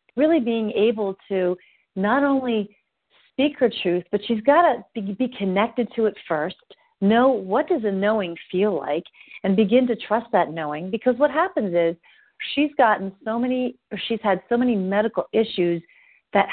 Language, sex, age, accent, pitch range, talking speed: English, female, 40-59, American, 185-235 Hz, 165 wpm